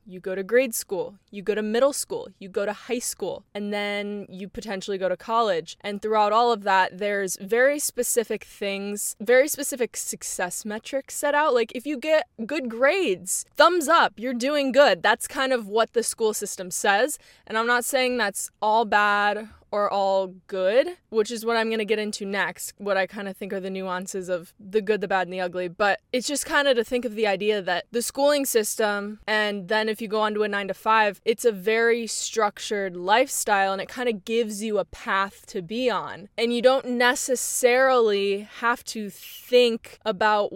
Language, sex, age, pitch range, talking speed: English, female, 20-39, 200-245 Hz, 205 wpm